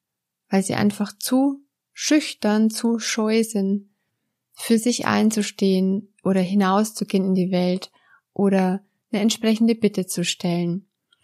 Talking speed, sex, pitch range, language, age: 115 wpm, female, 190-230 Hz, German, 20-39